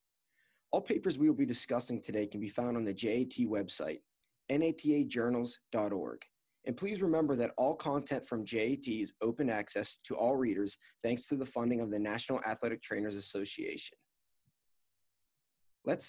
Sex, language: male, English